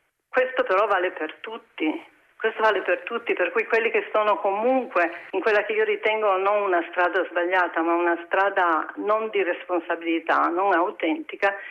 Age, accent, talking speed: 50-69, native, 165 wpm